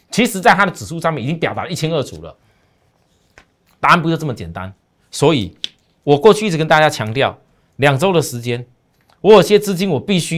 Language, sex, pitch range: Chinese, male, 120-195 Hz